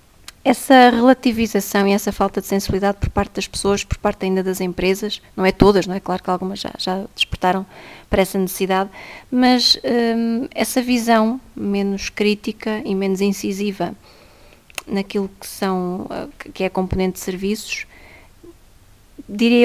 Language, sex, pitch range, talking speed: English, female, 190-240 Hz, 145 wpm